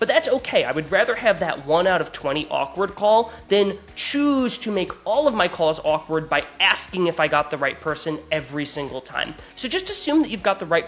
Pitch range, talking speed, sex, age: 165-230 Hz, 230 wpm, male, 20-39